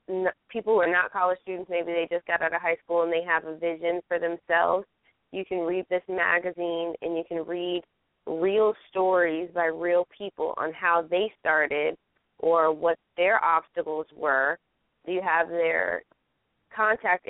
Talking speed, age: 165 wpm, 20-39